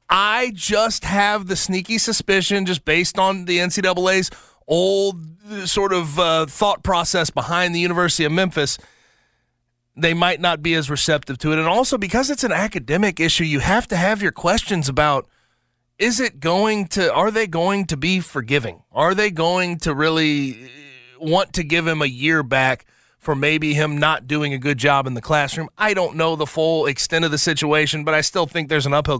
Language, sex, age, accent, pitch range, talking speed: English, male, 30-49, American, 145-190 Hz, 190 wpm